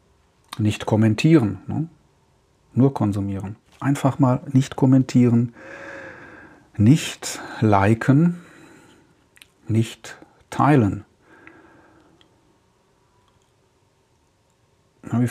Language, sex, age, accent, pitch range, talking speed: German, male, 40-59, German, 110-135 Hz, 50 wpm